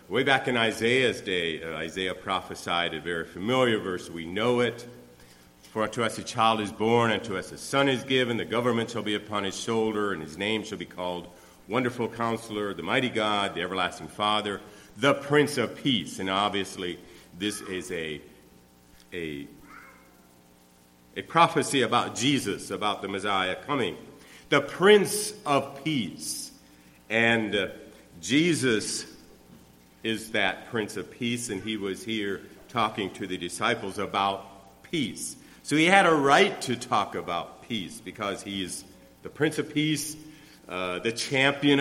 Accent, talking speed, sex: American, 155 wpm, male